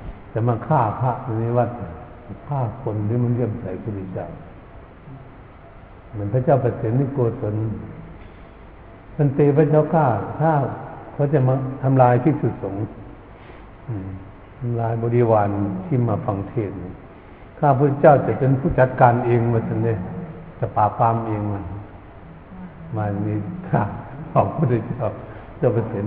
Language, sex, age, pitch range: Thai, male, 60-79, 105-135 Hz